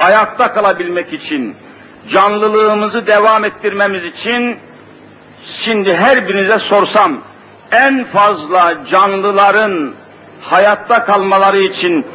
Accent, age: native, 60-79